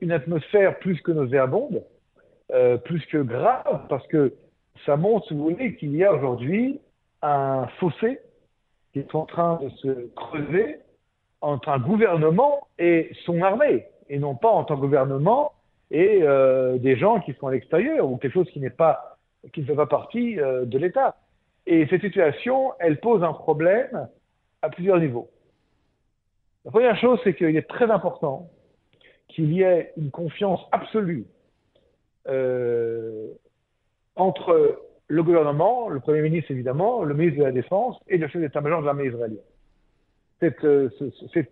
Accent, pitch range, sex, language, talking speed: French, 140-215 Hz, male, French, 160 wpm